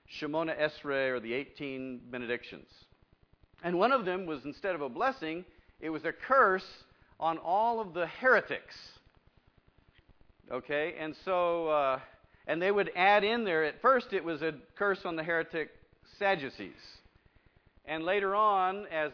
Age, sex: 50-69, male